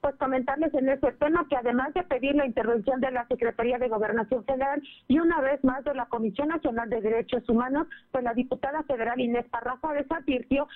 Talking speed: 195 wpm